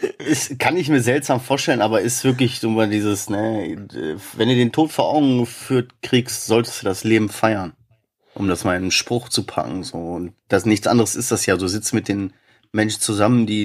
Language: German